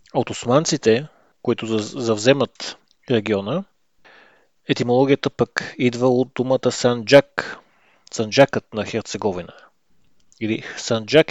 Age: 30-49